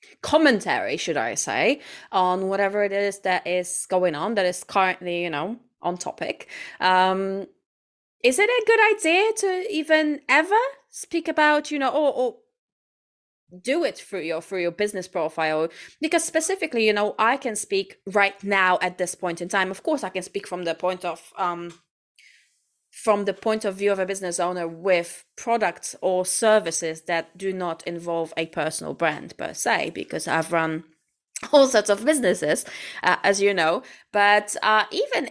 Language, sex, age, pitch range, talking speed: English, female, 20-39, 170-215 Hz, 175 wpm